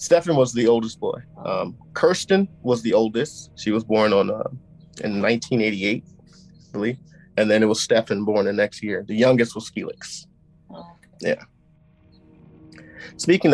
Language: English